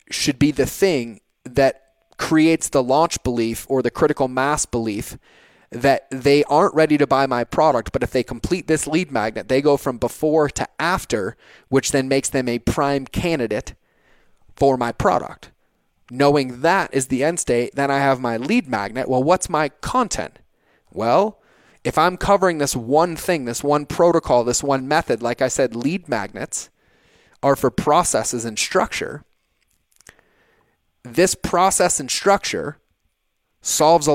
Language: English